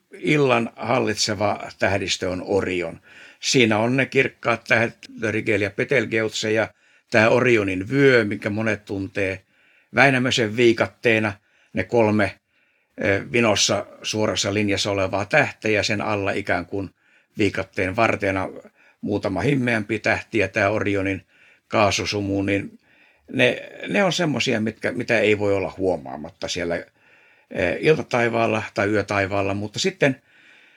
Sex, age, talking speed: male, 60-79, 115 wpm